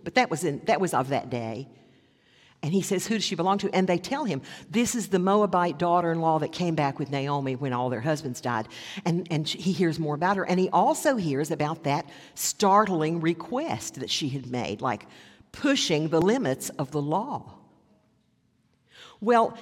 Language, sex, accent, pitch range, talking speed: English, female, American, 145-220 Hz, 195 wpm